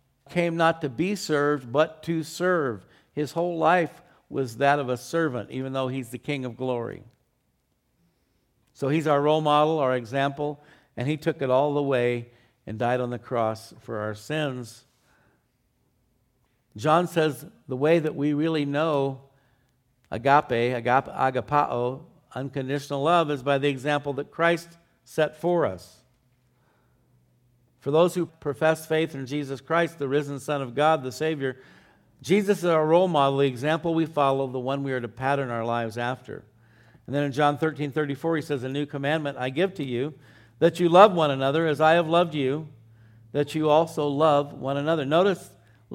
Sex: male